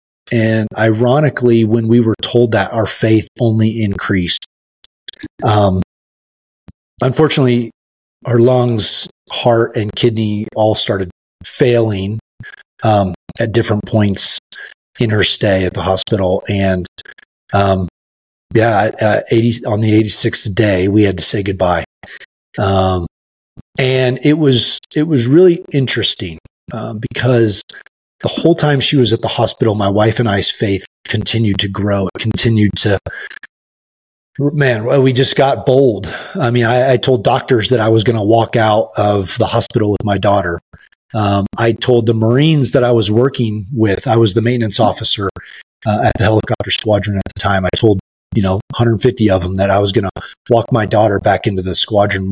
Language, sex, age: English, male, 30-49